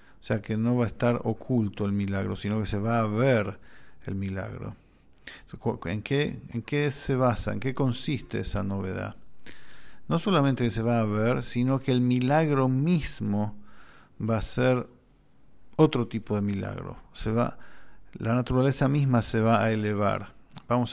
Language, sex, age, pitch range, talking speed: English, male, 50-69, 105-130 Hz, 160 wpm